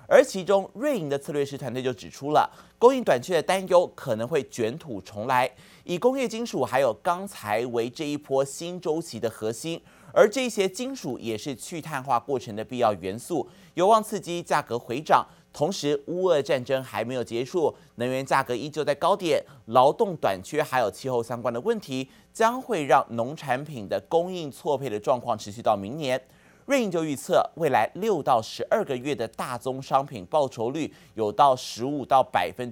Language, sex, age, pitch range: Chinese, male, 30-49, 125-175 Hz